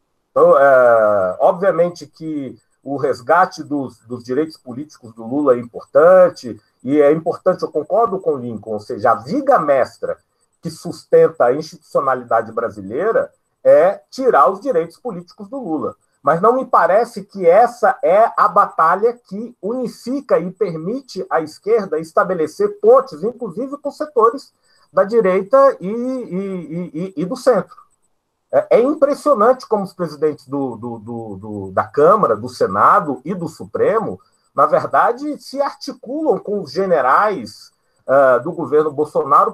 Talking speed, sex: 130 wpm, male